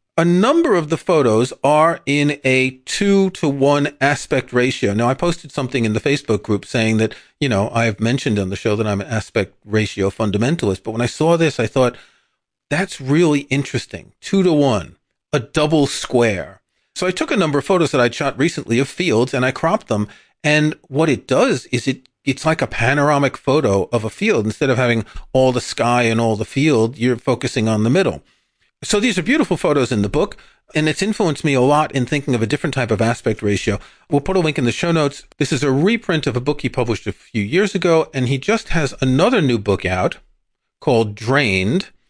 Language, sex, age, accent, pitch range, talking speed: English, male, 40-59, American, 110-150 Hz, 210 wpm